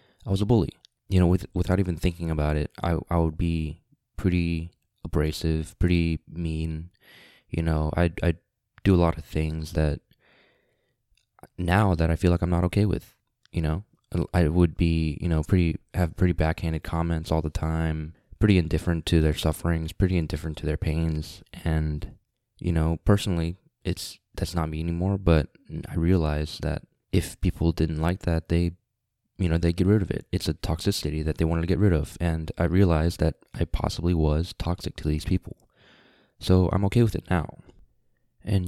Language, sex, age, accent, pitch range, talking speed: English, male, 20-39, American, 80-95 Hz, 185 wpm